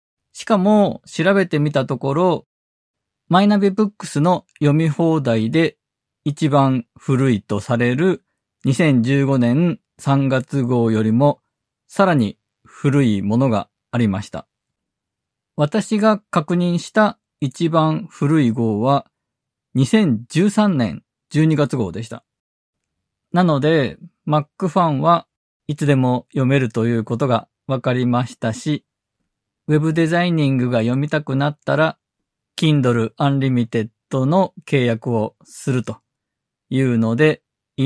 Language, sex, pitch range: Japanese, male, 115-155 Hz